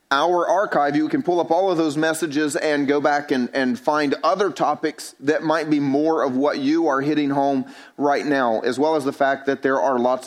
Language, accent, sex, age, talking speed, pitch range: English, American, male, 30-49, 230 wpm, 140-170 Hz